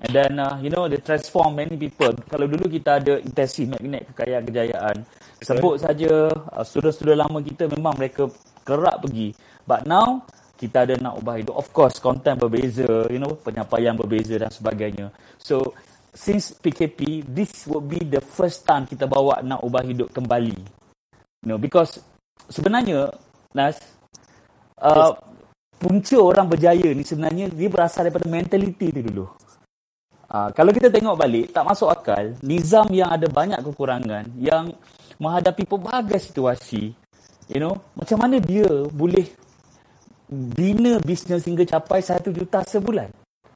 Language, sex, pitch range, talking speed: Malay, male, 125-185 Hz, 145 wpm